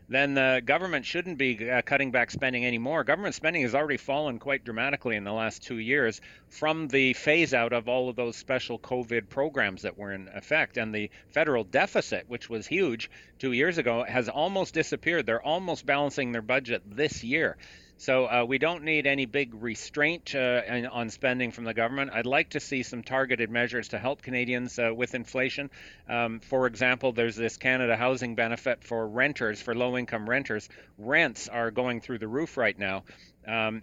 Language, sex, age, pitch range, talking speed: English, male, 40-59, 115-135 Hz, 190 wpm